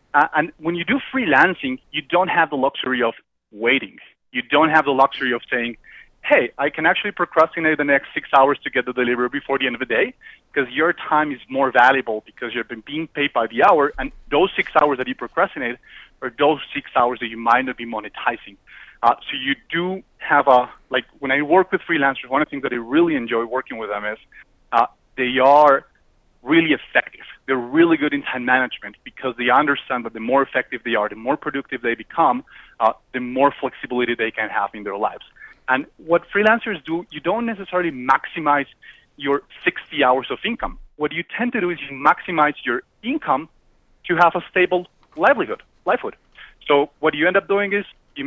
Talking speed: 205 wpm